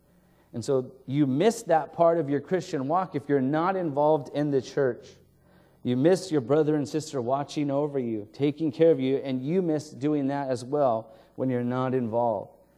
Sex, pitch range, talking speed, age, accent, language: male, 125-155 Hz, 195 wpm, 30-49, American, English